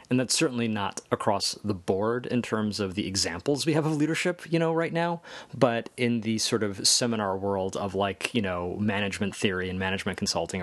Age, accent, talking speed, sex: 30-49, American, 205 wpm, male